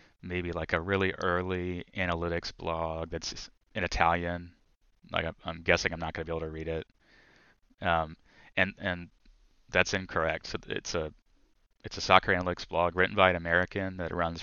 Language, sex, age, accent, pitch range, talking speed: English, male, 20-39, American, 80-95 Hz, 165 wpm